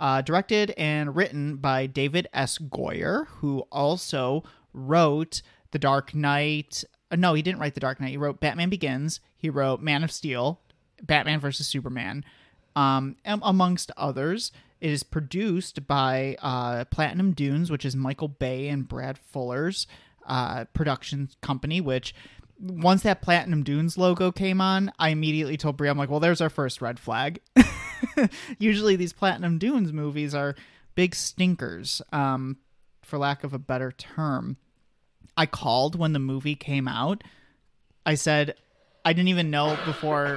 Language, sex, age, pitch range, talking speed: English, male, 30-49, 135-170 Hz, 155 wpm